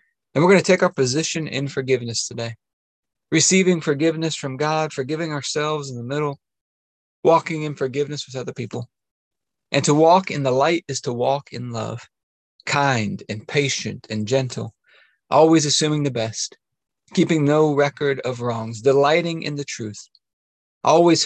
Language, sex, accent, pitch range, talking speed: English, male, American, 125-160 Hz, 155 wpm